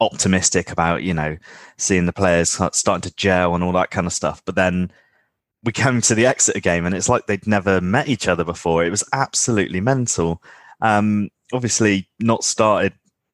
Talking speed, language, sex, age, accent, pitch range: 185 wpm, English, male, 20-39, British, 85-105 Hz